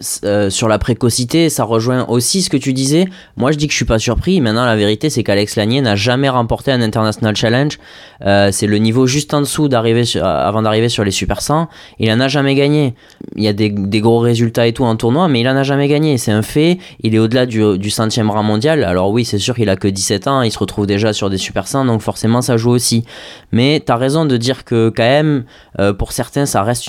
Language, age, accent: French, 20-39, French